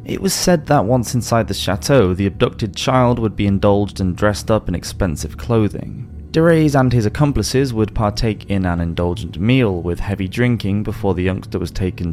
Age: 20-39